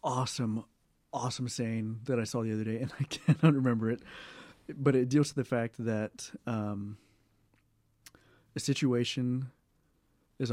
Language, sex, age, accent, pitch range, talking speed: English, male, 30-49, American, 110-130 Hz, 140 wpm